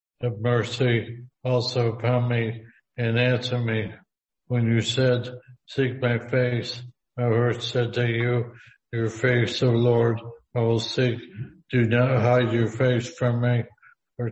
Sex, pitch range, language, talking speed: male, 115-125 Hz, English, 140 wpm